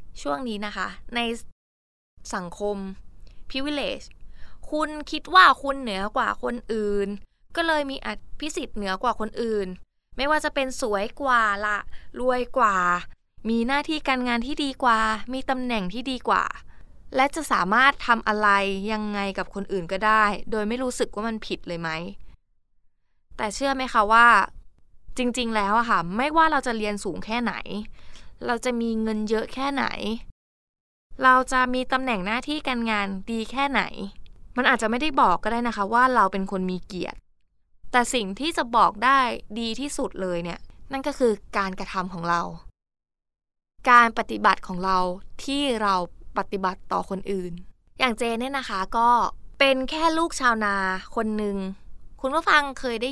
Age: 20-39